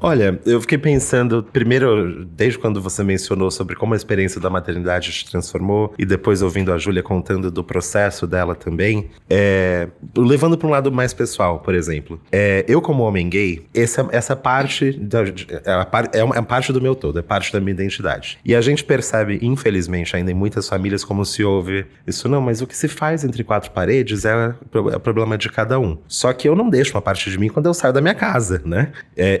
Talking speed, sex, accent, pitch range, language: 215 wpm, male, Brazilian, 95-125 Hz, Portuguese